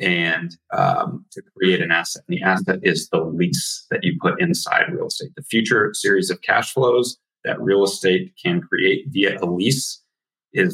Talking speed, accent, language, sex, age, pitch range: 180 wpm, American, English, male, 30-49, 95-120 Hz